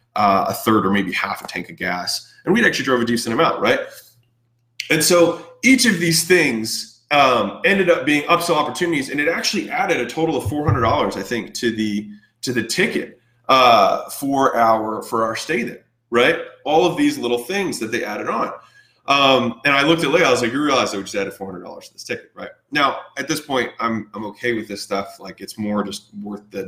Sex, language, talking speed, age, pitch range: male, English, 225 wpm, 20-39, 110-160 Hz